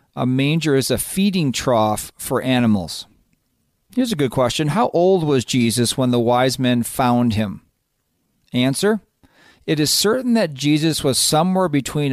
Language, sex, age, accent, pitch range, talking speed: English, male, 40-59, American, 125-155 Hz, 155 wpm